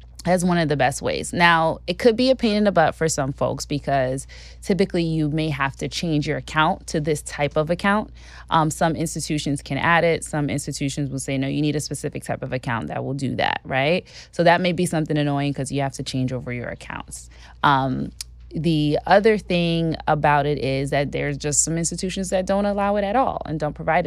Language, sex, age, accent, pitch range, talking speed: English, female, 20-39, American, 135-170 Hz, 220 wpm